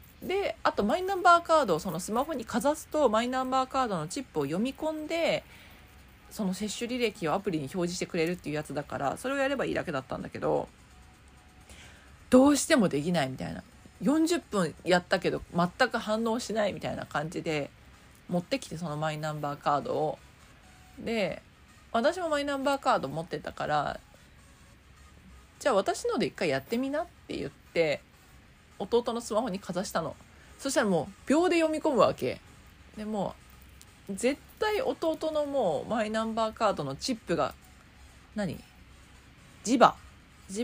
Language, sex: Japanese, female